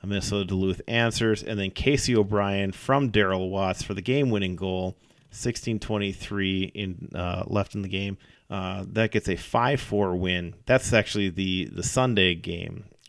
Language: English